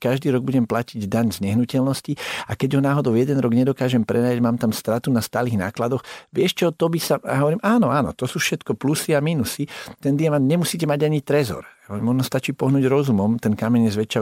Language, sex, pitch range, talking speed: Slovak, male, 95-125 Hz, 210 wpm